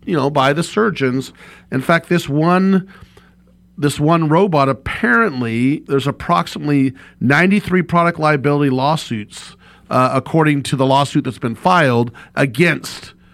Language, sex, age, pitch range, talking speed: English, male, 40-59, 130-155 Hz, 125 wpm